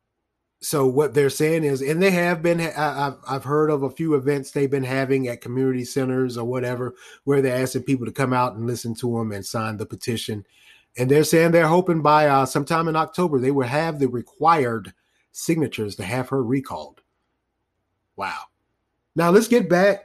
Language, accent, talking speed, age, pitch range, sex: English, American, 190 wpm, 30-49, 130-160 Hz, male